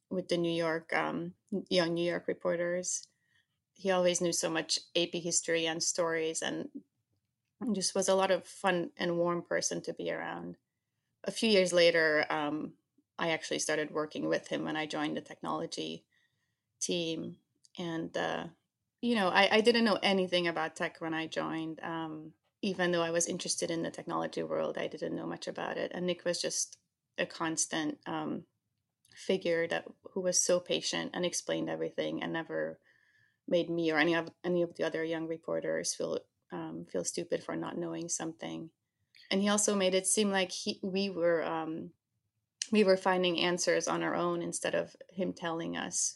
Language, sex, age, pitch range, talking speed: English, female, 30-49, 160-185 Hz, 180 wpm